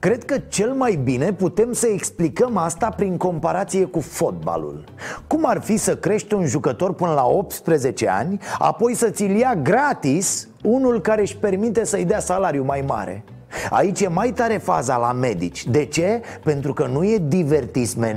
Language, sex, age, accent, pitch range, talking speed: Romanian, male, 30-49, native, 145-215 Hz, 170 wpm